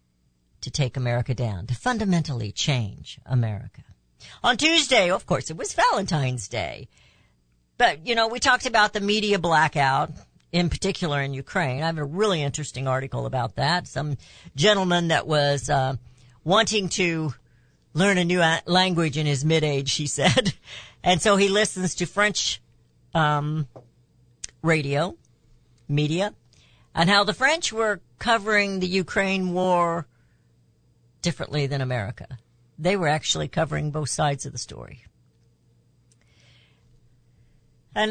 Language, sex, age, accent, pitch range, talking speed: English, female, 50-69, American, 120-185 Hz, 135 wpm